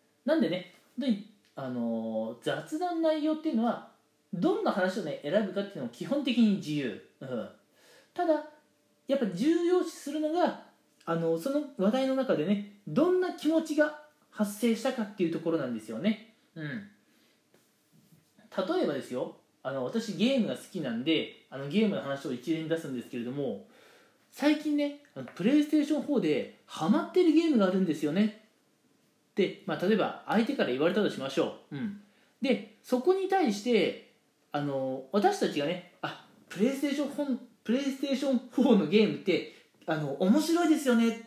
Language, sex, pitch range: Japanese, male, 185-290 Hz